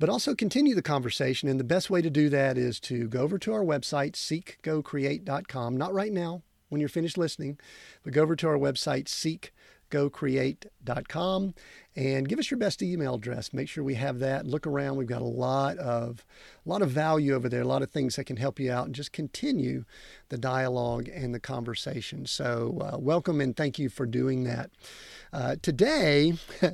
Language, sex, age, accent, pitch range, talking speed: English, male, 50-69, American, 130-160 Hz, 195 wpm